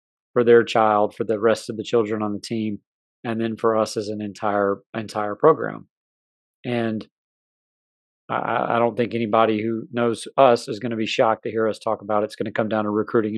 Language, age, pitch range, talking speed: English, 30-49, 110-125 Hz, 215 wpm